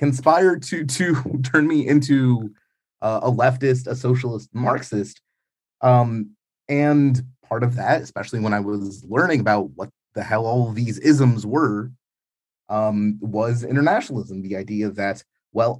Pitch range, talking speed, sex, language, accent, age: 105-140 Hz, 140 wpm, male, English, American, 30-49